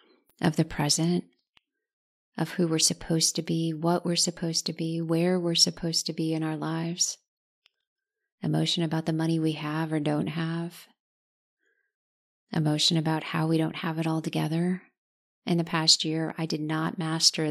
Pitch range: 160-175 Hz